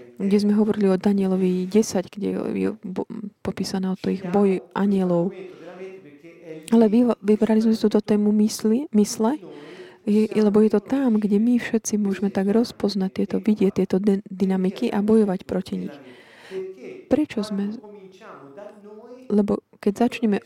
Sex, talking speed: female, 145 wpm